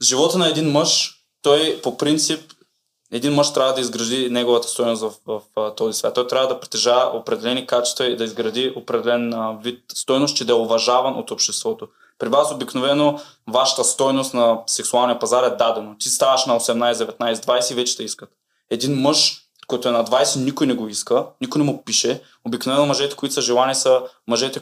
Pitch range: 120-140 Hz